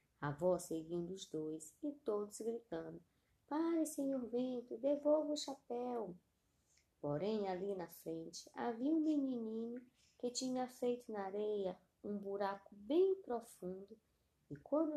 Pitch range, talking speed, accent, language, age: 170-260 Hz, 130 wpm, Brazilian, Portuguese, 20-39